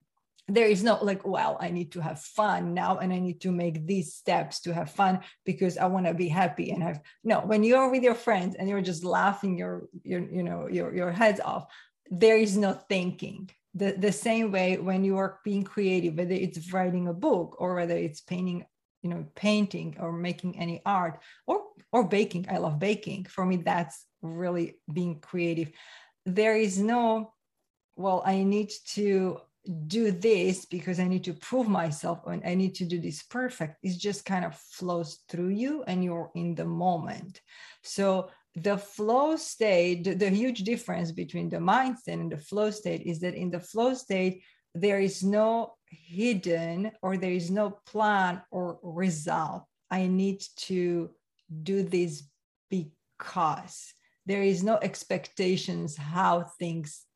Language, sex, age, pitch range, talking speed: English, female, 30-49, 175-205 Hz, 175 wpm